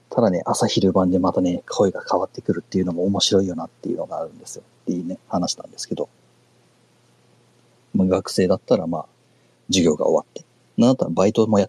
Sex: male